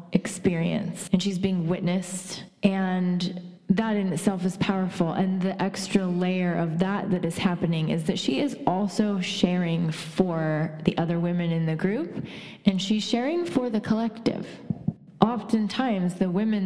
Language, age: English, 20-39